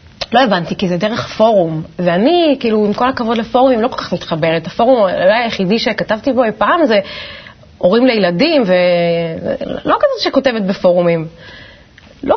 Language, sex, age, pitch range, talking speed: Hebrew, female, 30-49, 180-265 Hz, 150 wpm